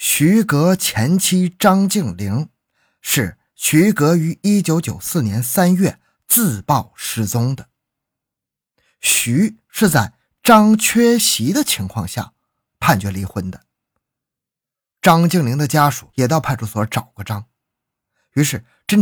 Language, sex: Chinese, male